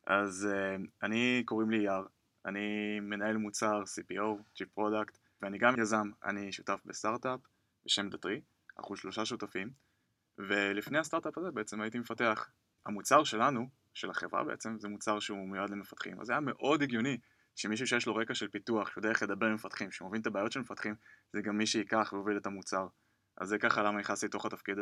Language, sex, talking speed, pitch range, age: Hebrew, male, 180 wpm, 105-115 Hz, 20-39